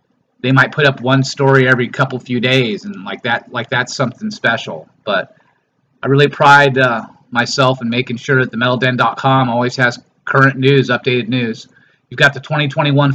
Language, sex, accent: English, male, American